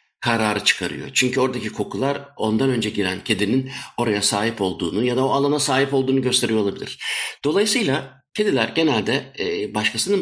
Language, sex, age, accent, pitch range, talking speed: Turkish, male, 60-79, native, 105-150 Hz, 140 wpm